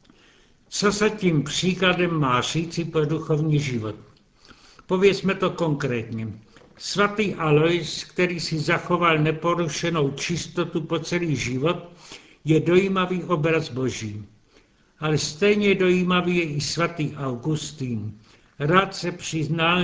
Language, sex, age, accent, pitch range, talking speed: Czech, male, 70-89, native, 150-175 Hz, 110 wpm